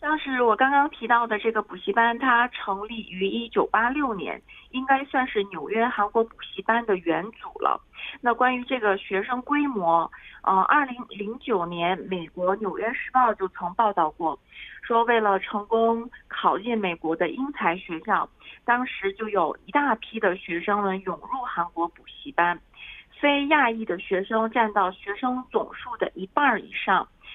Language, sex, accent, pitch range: Korean, female, Chinese, 190-245 Hz